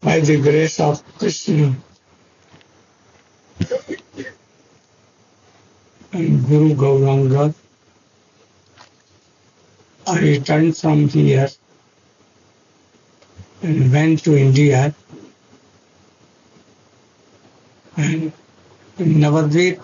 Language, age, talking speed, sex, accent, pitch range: English, 60-79, 55 wpm, male, Indian, 130-160 Hz